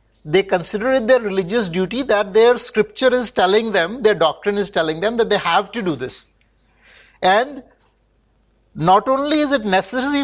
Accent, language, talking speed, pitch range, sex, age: Indian, English, 170 wpm, 160-220 Hz, male, 60-79